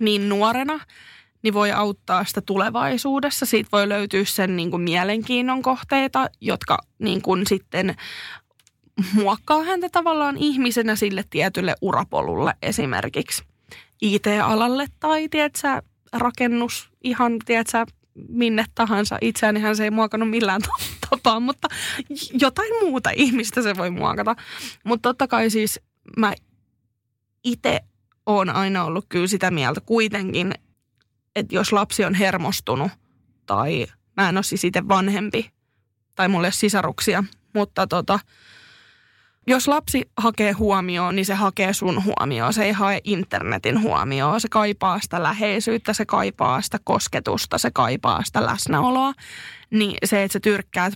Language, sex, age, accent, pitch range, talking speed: Finnish, female, 20-39, native, 190-240 Hz, 125 wpm